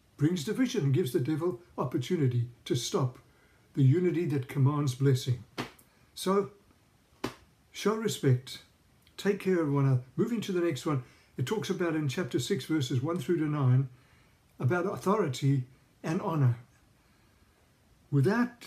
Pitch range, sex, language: 130-190 Hz, male, English